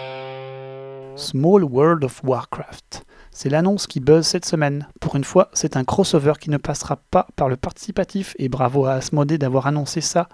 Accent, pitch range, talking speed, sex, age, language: French, 135-170 Hz, 175 wpm, male, 30-49, French